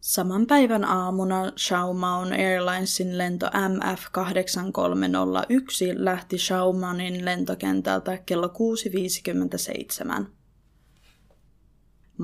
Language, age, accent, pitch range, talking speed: Finnish, 20-39, native, 180-205 Hz, 60 wpm